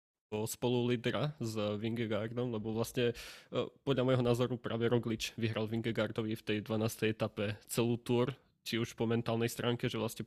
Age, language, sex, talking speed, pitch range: 20-39, Slovak, male, 160 wpm, 115-125 Hz